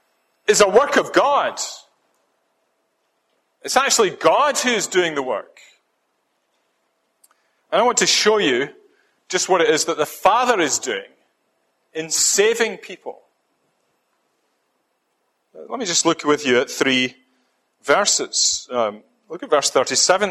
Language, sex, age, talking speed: English, male, 40-59, 135 wpm